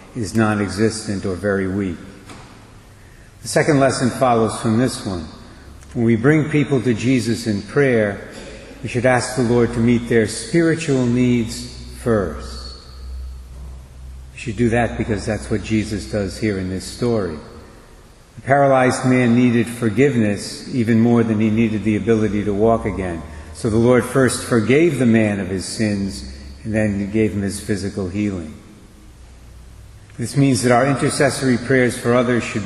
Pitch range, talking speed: 100-125 Hz, 160 wpm